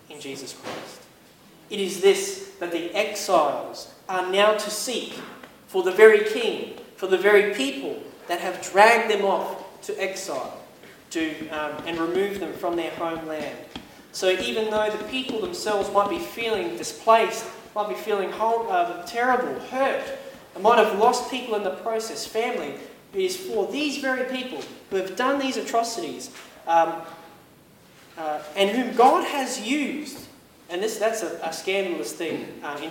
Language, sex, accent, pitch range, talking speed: English, male, Australian, 175-245 Hz, 160 wpm